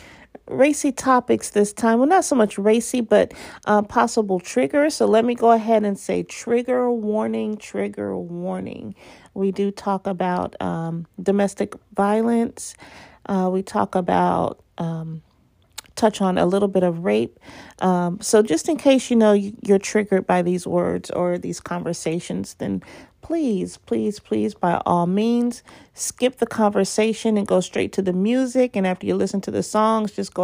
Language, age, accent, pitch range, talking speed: English, 40-59, American, 185-235 Hz, 165 wpm